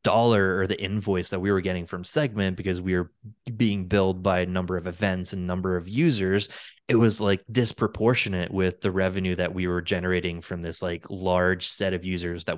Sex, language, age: male, English, 20-39